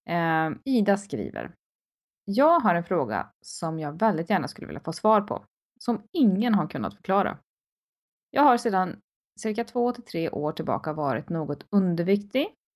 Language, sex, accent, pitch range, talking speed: Swedish, female, native, 170-225 Hz, 150 wpm